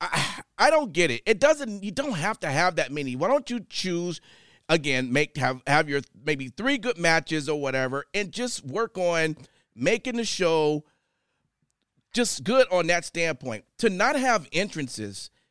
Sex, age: male, 40-59